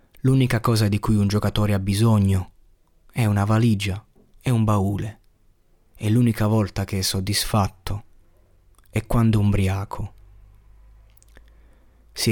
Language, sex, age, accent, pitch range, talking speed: Italian, male, 30-49, native, 95-110 Hz, 120 wpm